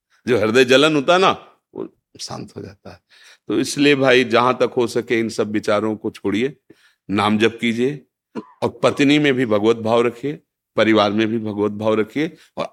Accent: native